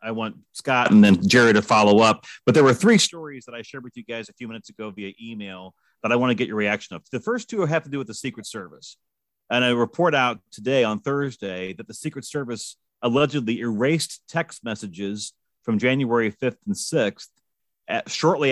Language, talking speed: English, 215 wpm